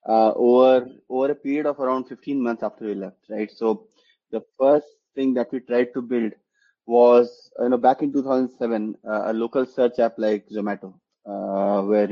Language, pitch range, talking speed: English, 105-125 Hz, 185 wpm